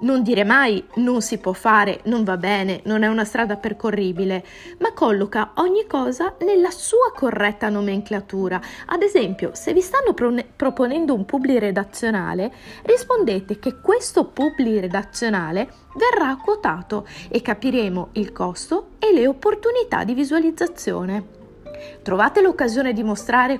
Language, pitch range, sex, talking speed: Italian, 200-275 Hz, female, 135 wpm